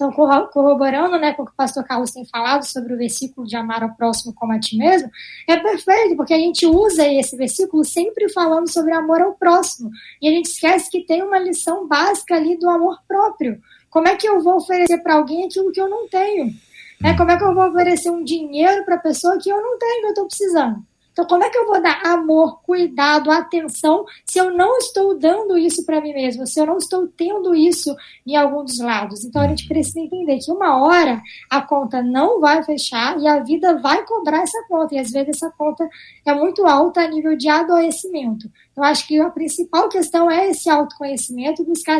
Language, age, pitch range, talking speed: Portuguese, 20-39, 290-355 Hz, 220 wpm